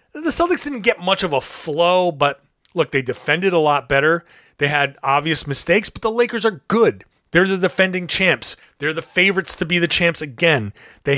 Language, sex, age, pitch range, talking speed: English, male, 30-49, 150-190 Hz, 200 wpm